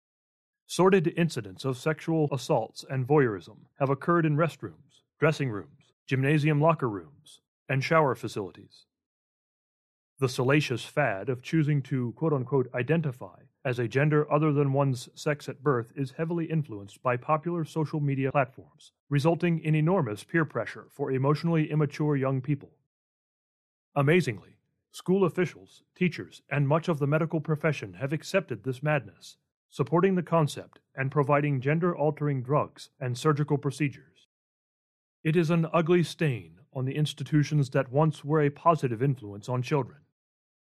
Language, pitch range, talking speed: English, 130-155 Hz, 140 wpm